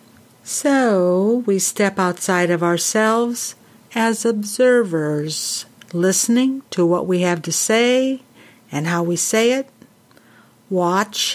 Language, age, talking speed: English, 60-79, 110 wpm